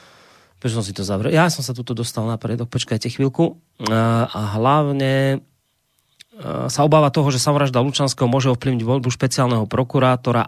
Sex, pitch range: male, 115-135 Hz